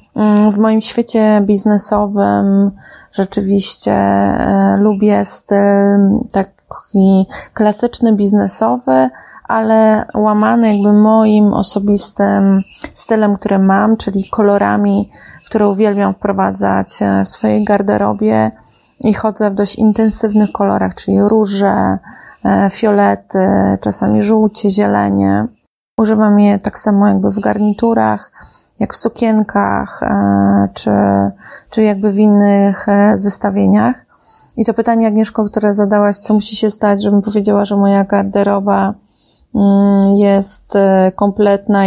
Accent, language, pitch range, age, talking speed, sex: native, Polish, 185-215 Hz, 30-49, 100 wpm, female